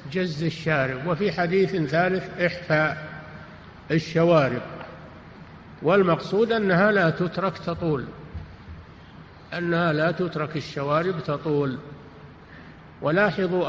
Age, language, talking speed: 50-69, Arabic, 80 wpm